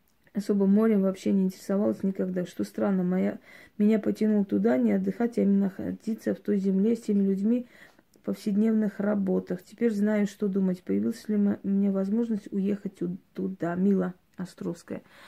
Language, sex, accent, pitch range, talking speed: Russian, female, native, 185-215 Hz, 155 wpm